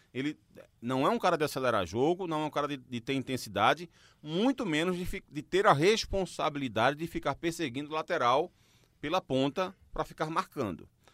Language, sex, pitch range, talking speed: Portuguese, male, 130-180 Hz, 185 wpm